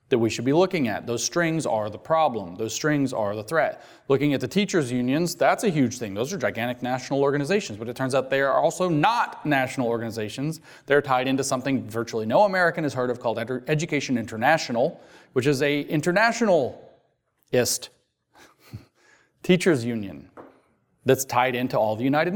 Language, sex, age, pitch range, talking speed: English, male, 30-49, 130-165 Hz, 175 wpm